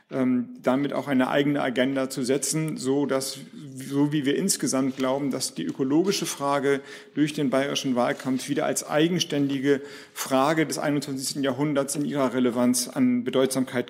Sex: male